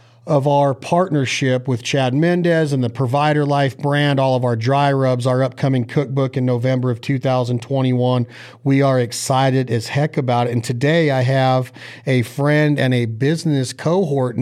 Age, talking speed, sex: 40-59, 165 wpm, male